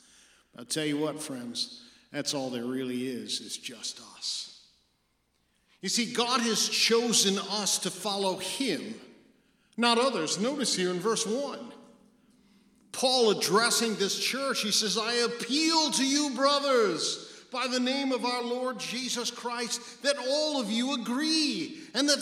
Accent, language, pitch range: American, English, 195-245 Hz